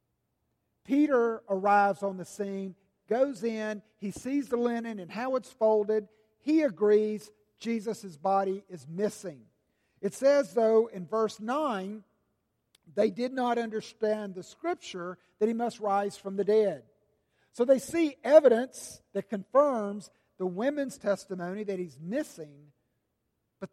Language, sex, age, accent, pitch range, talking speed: English, male, 50-69, American, 160-220 Hz, 135 wpm